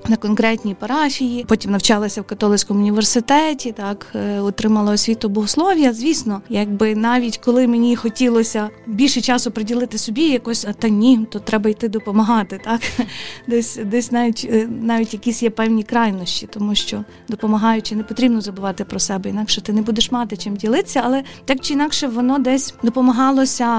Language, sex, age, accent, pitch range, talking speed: Ukrainian, female, 20-39, native, 215-255 Hz, 155 wpm